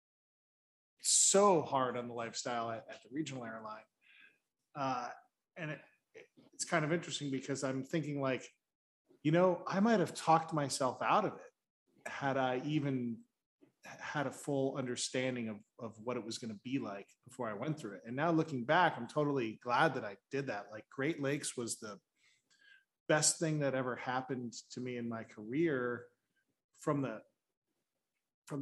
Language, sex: English, male